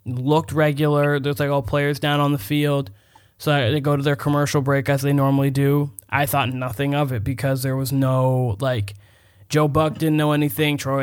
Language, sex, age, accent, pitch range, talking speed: English, male, 20-39, American, 130-145 Hz, 200 wpm